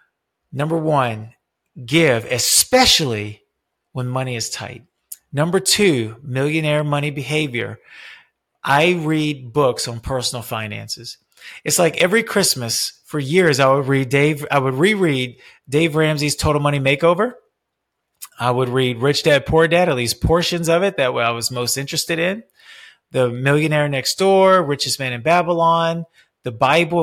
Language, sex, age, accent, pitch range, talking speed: English, male, 30-49, American, 130-170 Hz, 145 wpm